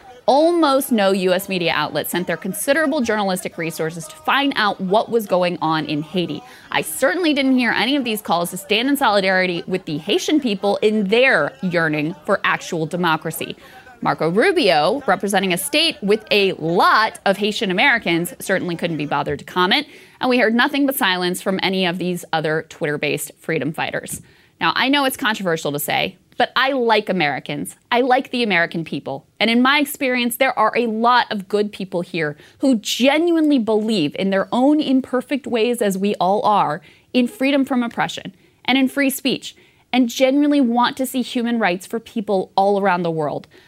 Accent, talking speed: American, 185 wpm